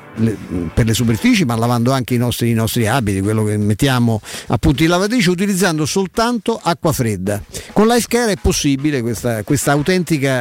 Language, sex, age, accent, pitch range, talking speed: Italian, male, 50-69, native, 125-170 Hz, 160 wpm